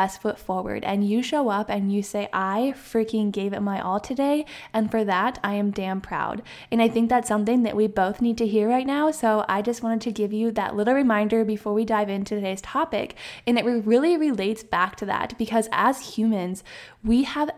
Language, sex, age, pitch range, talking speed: English, female, 10-29, 205-245 Hz, 220 wpm